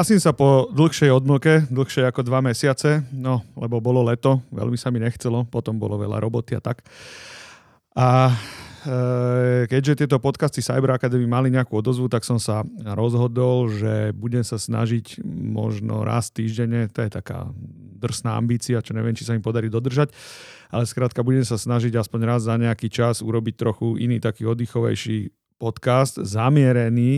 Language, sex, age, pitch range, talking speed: Slovak, male, 40-59, 110-125 Hz, 160 wpm